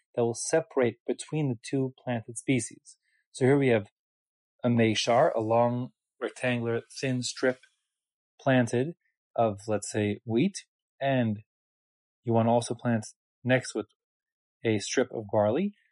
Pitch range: 115-140 Hz